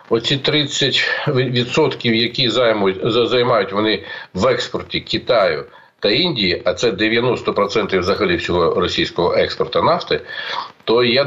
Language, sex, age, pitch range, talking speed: Ukrainian, male, 50-69, 110-145 Hz, 105 wpm